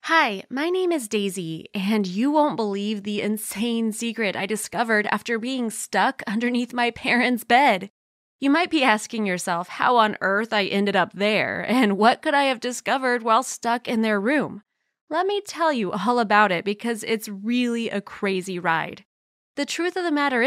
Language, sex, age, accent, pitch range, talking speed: English, female, 20-39, American, 200-260 Hz, 180 wpm